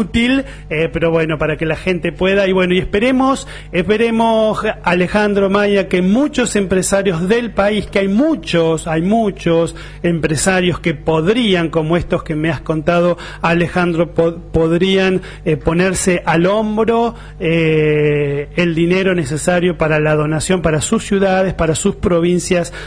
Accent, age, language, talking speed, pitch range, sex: Argentinian, 30-49, Spanish, 140 wpm, 160-185 Hz, male